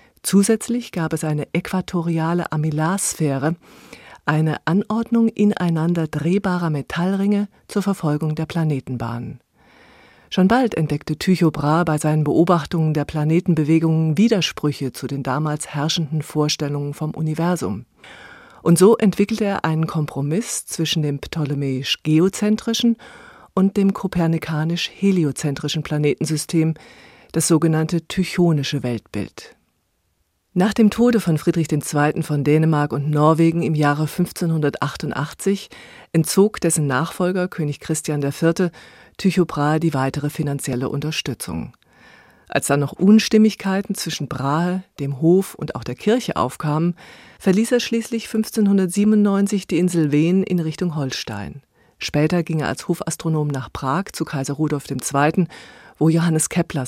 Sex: female